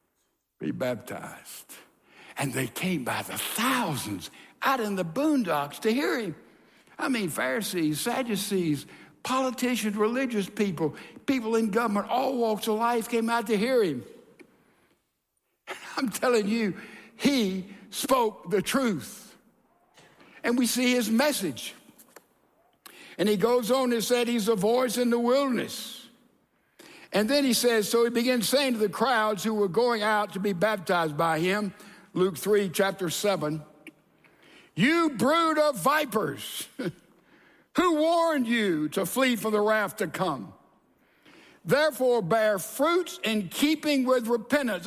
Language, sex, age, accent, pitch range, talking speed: English, male, 60-79, American, 205-260 Hz, 140 wpm